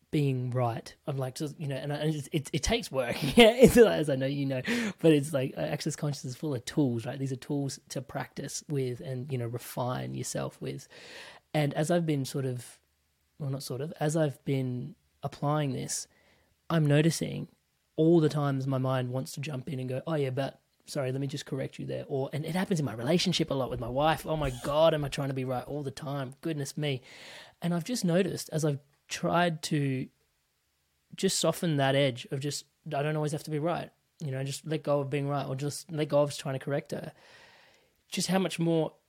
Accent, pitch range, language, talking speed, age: Australian, 135-160 Hz, English, 230 wpm, 20-39